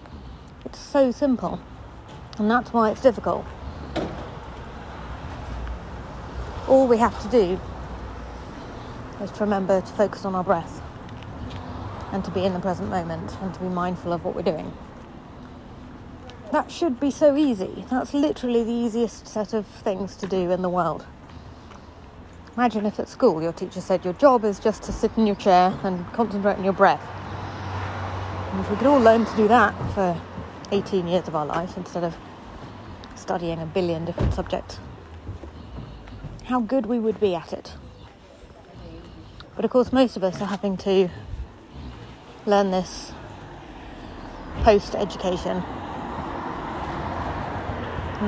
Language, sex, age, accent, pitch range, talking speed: English, female, 40-59, British, 150-215 Hz, 145 wpm